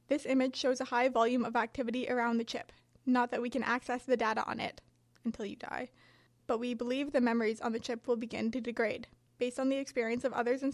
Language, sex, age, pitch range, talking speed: English, female, 20-39, 235-265 Hz, 235 wpm